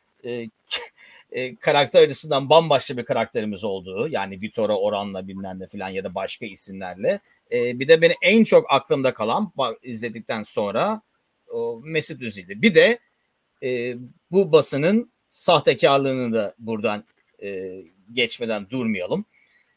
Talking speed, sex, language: 125 wpm, male, Turkish